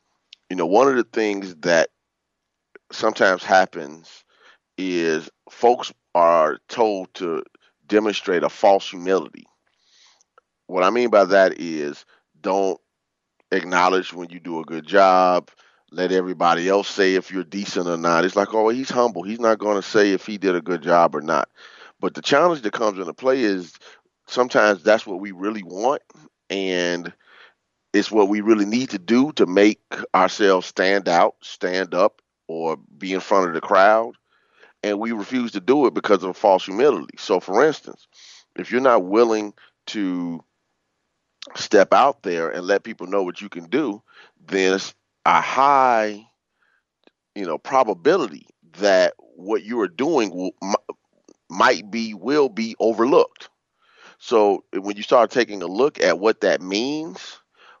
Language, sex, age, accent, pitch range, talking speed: English, male, 30-49, American, 90-110 Hz, 160 wpm